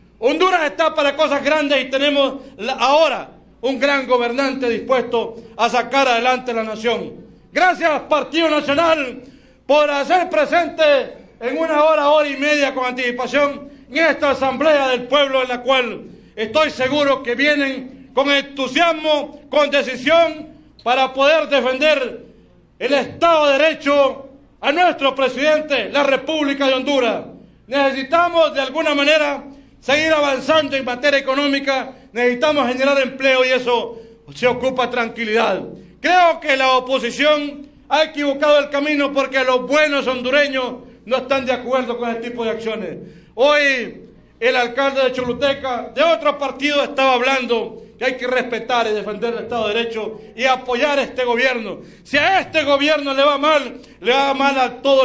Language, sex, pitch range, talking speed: English, male, 250-290 Hz, 150 wpm